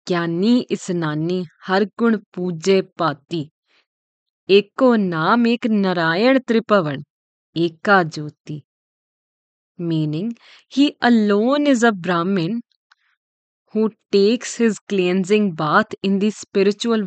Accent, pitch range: Indian, 170-225 Hz